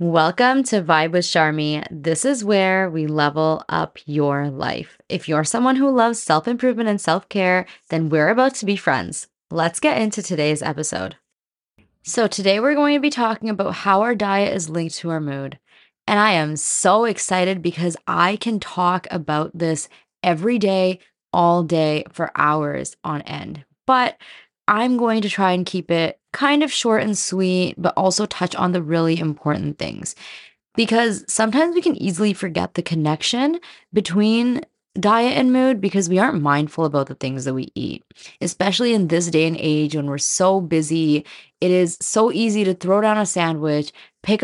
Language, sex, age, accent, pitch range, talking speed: English, female, 20-39, American, 160-215 Hz, 175 wpm